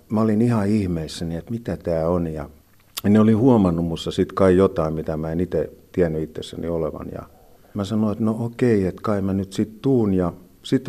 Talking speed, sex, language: 205 wpm, male, Finnish